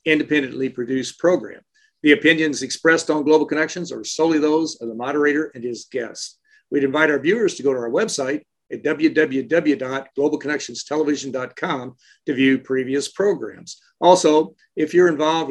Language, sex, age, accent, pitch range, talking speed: English, male, 50-69, American, 135-160 Hz, 145 wpm